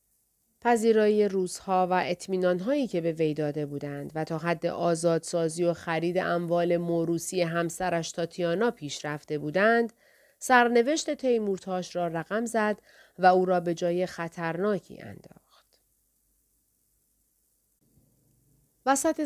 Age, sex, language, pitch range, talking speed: 40-59, female, Persian, 170-225 Hz, 110 wpm